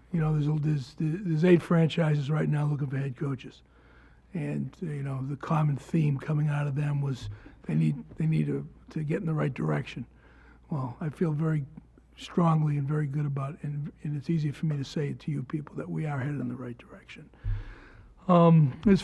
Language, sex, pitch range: English, male, 145-175 Hz